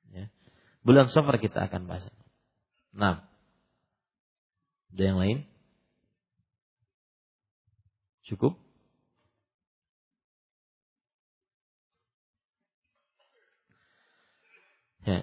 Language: Malay